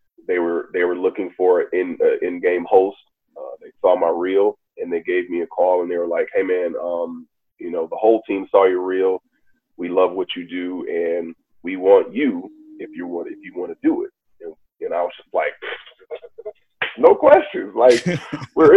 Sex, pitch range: male, 310-460 Hz